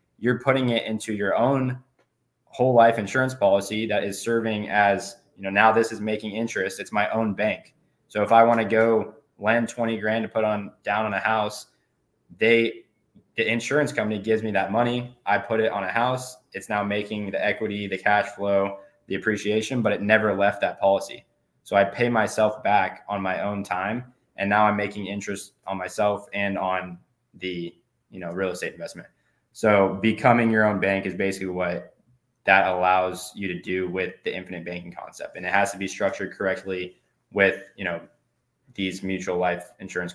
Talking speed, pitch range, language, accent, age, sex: 190 wpm, 95-115 Hz, English, American, 20-39, male